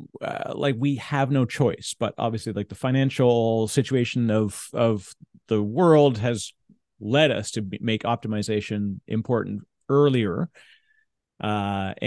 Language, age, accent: English, 40-59, American